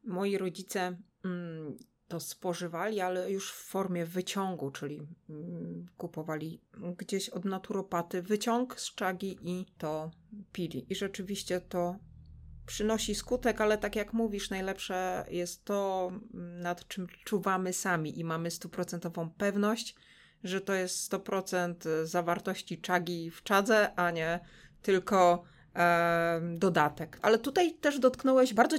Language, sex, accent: Polish, female, native